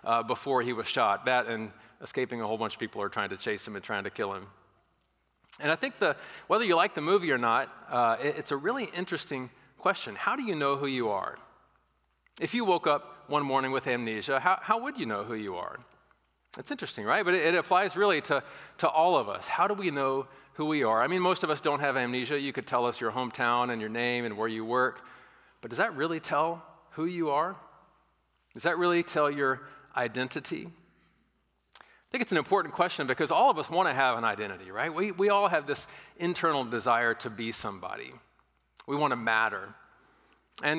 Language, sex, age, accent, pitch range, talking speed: English, male, 40-59, American, 120-150 Hz, 220 wpm